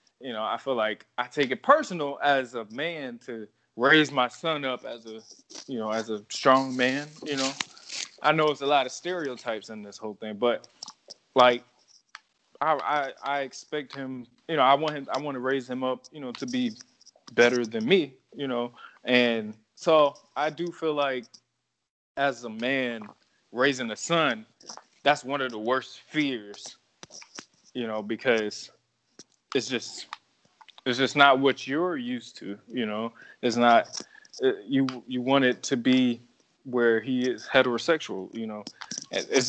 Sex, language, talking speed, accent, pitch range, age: male, English, 170 wpm, American, 120-155 Hz, 20-39